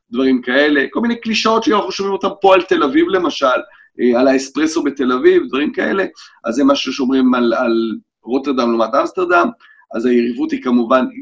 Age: 40-59